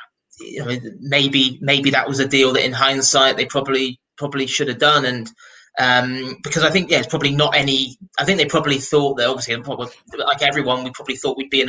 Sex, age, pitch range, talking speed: male, 30-49, 130-145 Hz, 215 wpm